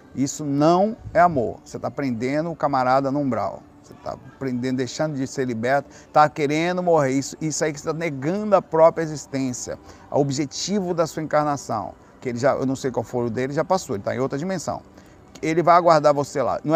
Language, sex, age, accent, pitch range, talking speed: Portuguese, male, 50-69, Brazilian, 130-155 Hz, 195 wpm